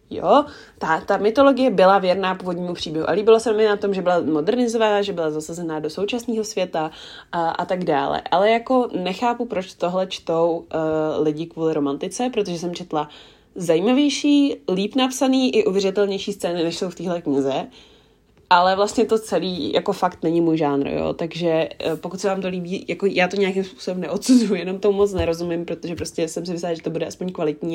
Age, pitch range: 20-39, 170-220 Hz